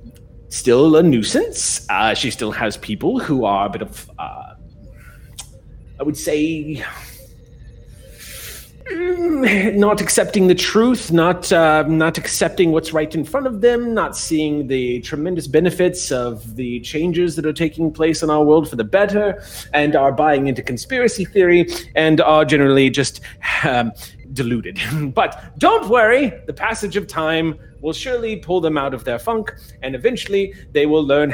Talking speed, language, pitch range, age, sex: 155 wpm, English, 125-195 Hz, 30-49, male